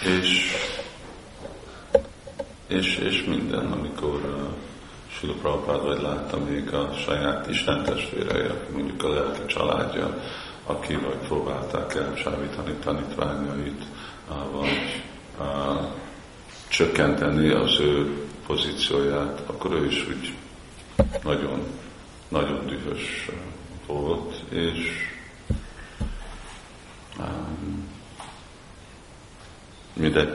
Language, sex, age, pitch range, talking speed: Hungarian, male, 50-69, 70-75 Hz, 80 wpm